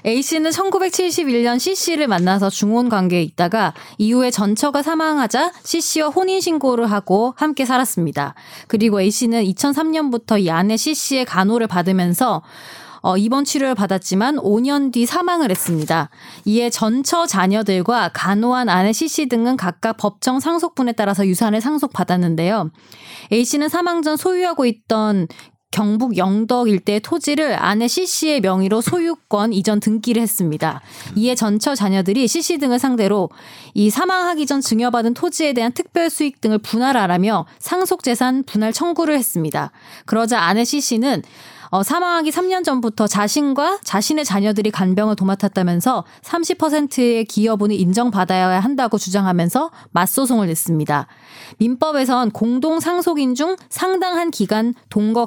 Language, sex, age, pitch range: Korean, female, 20-39, 200-290 Hz